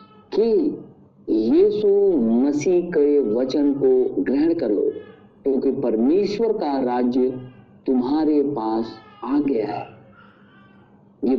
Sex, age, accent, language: male, 50-69, native, Hindi